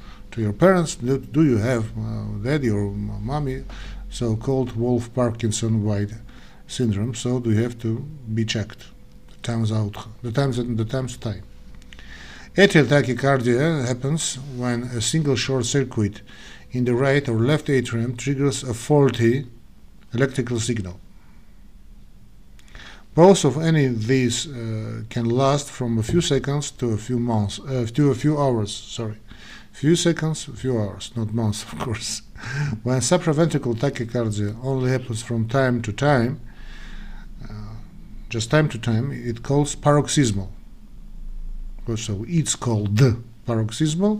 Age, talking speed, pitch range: 50-69, 140 wpm, 110-140 Hz